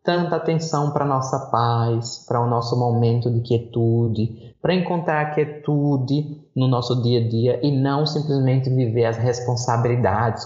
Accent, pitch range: Brazilian, 115-155 Hz